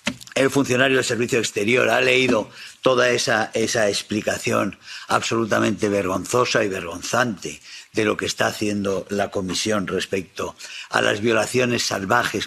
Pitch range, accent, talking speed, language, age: 105-120 Hz, Spanish, 130 wpm, English, 50-69